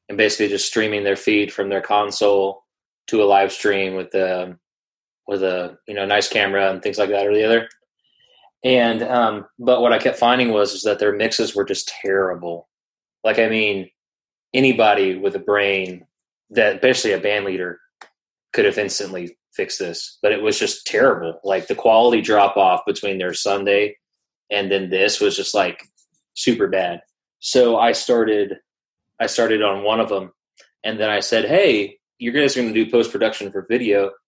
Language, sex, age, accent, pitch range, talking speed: English, male, 20-39, American, 95-125 Hz, 180 wpm